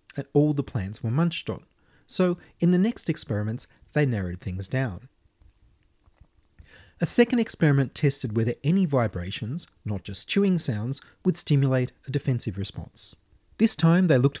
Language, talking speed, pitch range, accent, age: English, 150 wpm, 110-160 Hz, Australian, 30-49